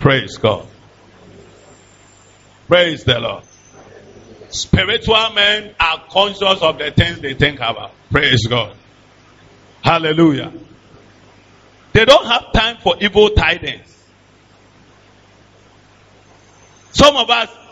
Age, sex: 50-69, male